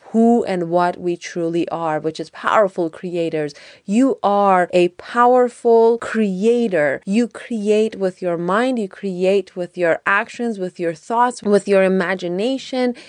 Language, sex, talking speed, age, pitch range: English, female, 140 wpm, 30-49, 180-235 Hz